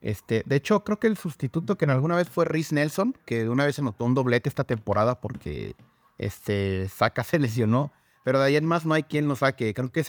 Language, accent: Spanish, Mexican